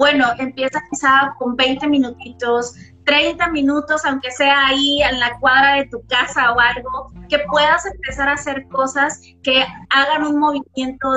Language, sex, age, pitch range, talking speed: Spanish, female, 20-39, 250-295 Hz, 155 wpm